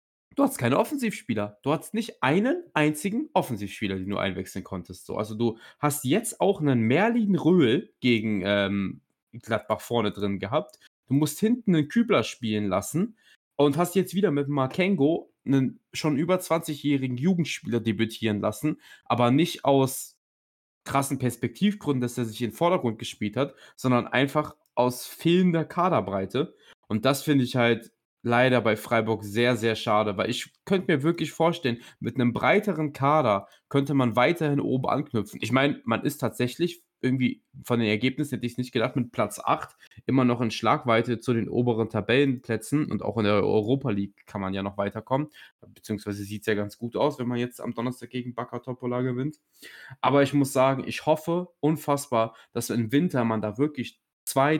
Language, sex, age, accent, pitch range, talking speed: German, male, 20-39, German, 115-150 Hz, 175 wpm